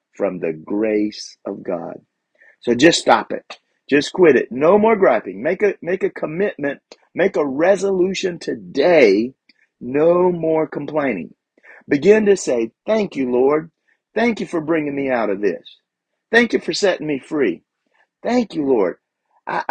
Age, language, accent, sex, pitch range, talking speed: 50-69, English, American, male, 150-210 Hz, 155 wpm